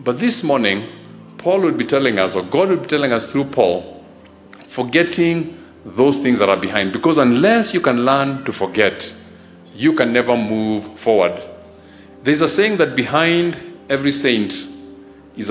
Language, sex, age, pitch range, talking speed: English, male, 50-69, 110-165 Hz, 165 wpm